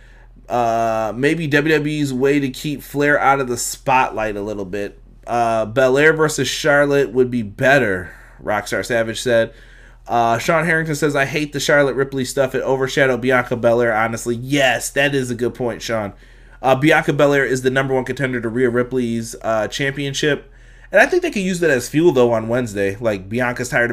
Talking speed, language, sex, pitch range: 185 wpm, English, male, 115-145 Hz